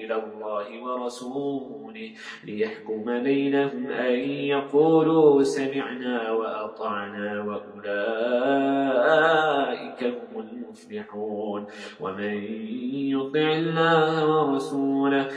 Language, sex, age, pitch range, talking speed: English, male, 30-49, 120-155 Hz, 55 wpm